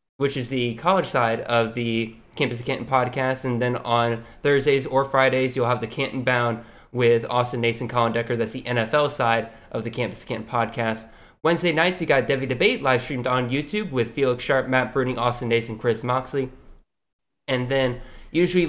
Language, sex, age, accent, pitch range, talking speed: English, male, 20-39, American, 115-135 Hz, 190 wpm